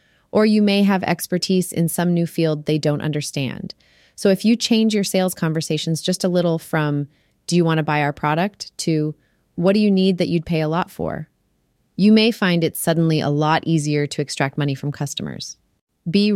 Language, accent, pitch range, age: English, American, 150-180 Hz, 30-49